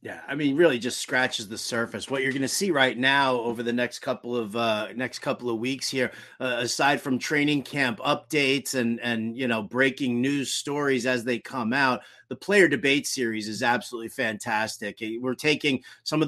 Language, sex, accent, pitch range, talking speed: English, male, American, 125-155 Hz, 200 wpm